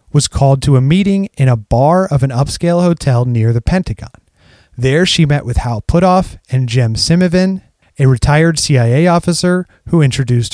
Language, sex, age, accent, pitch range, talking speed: English, male, 30-49, American, 120-160 Hz, 170 wpm